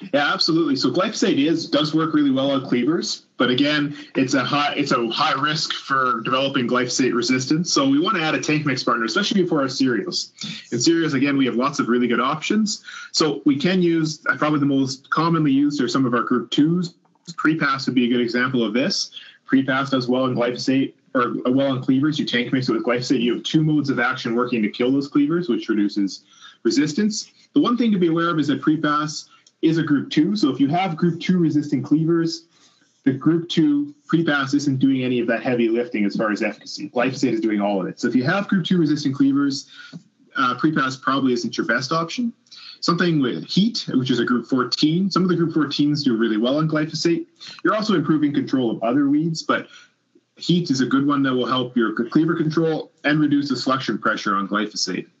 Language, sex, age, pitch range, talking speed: English, male, 20-39, 130-165 Hz, 220 wpm